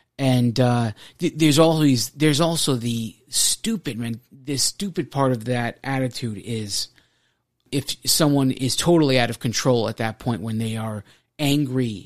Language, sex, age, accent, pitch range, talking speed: English, male, 30-49, American, 120-150 Hz, 155 wpm